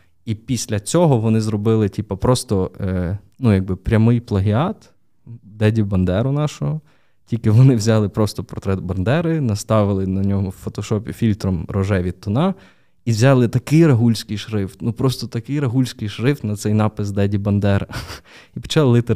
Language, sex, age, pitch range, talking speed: Ukrainian, male, 20-39, 105-120 Hz, 145 wpm